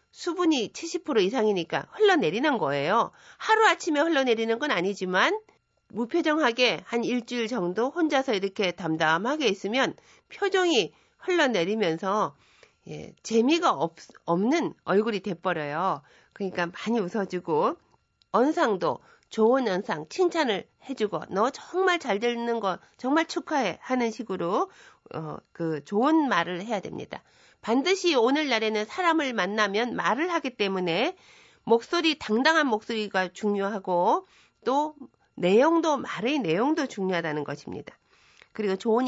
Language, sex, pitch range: Korean, female, 190-310 Hz